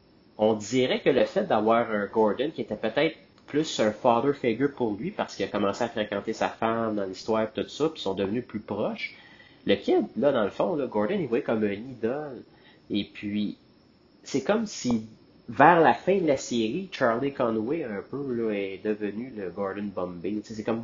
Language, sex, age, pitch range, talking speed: French, male, 30-49, 100-115 Hz, 210 wpm